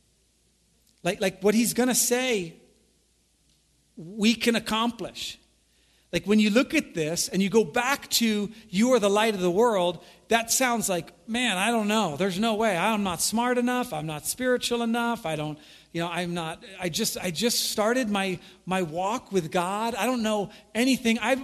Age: 40-59